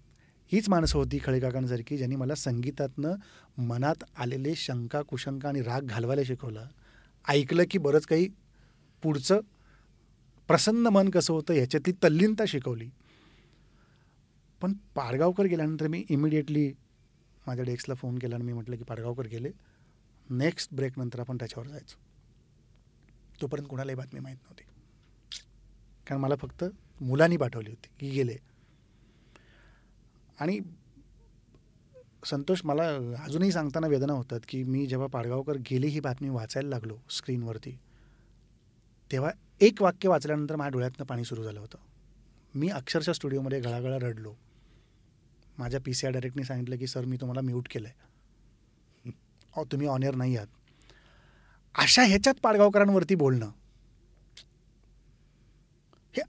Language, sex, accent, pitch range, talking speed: Marathi, male, native, 120-155 Hz, 120 wpm